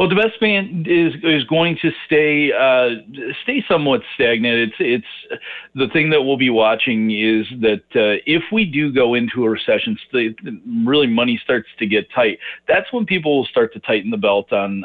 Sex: male